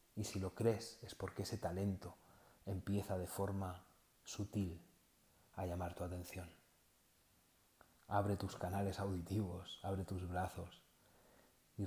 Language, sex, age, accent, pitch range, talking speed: Spanish, male, 40-59, Spanish, 90-100 Hz, 120 wpm